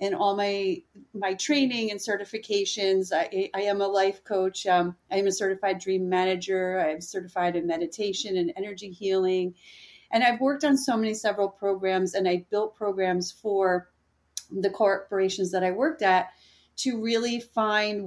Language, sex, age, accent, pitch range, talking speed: English, female, 40-59, American, 185-215 Hz, 165 wpm